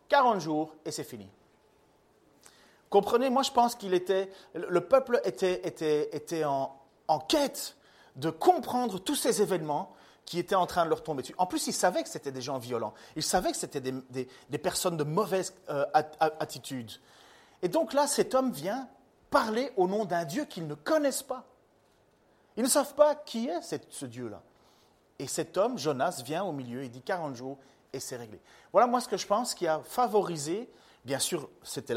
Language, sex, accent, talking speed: French, male, French, 190 wpm